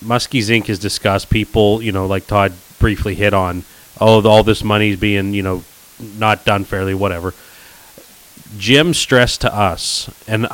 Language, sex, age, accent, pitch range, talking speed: English, male, 30-49, American, 95-115 Hz, 160 wpm